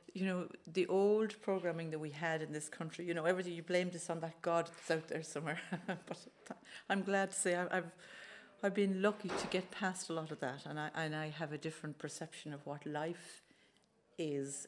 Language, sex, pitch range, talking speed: English, female, 155-190 Hz, 215 wpm